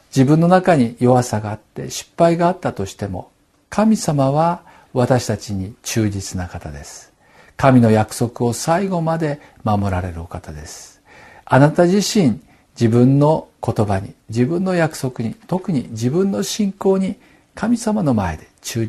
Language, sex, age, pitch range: Japanese, male, 50-69, 110-165 Hz